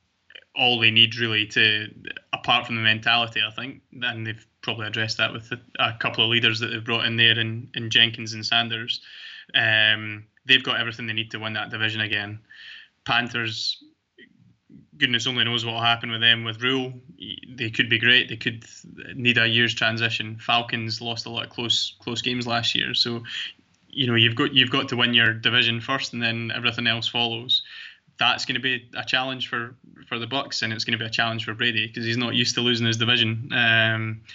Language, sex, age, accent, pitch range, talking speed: English, male, 20-39, British, 115-125 Hz, 210 wpm